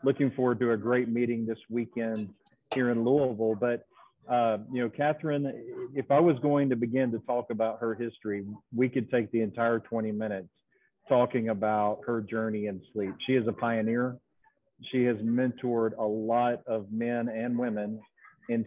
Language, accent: English, American